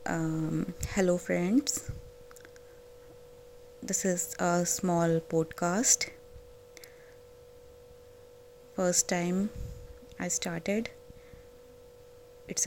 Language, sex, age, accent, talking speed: Hindi, female, 20-39, native, 55 wpm